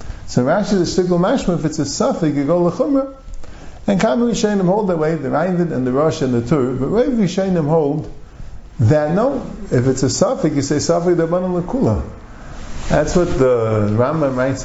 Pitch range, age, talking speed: 125-175 Hz, 50-69, 195 wpm